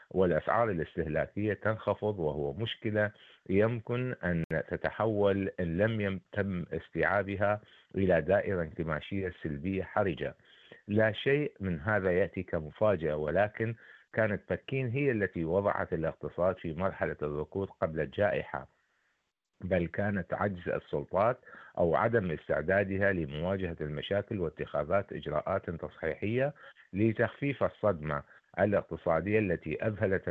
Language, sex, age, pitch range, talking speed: Arabic, male, 50-69, 80-105 Hz, 105 wpm